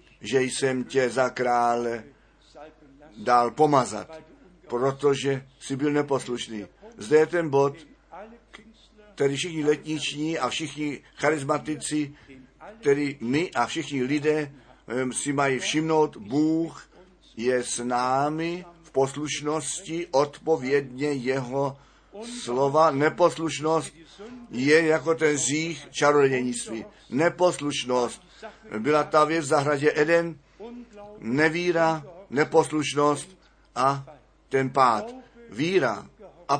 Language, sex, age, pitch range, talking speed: Czech, male, 50-69, 135-165 Hz, 95 wpm